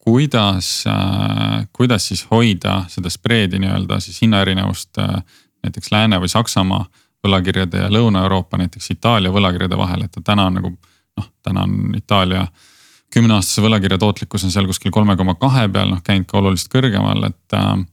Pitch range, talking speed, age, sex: 95-110 Hz, 140 wpm, 30-49, male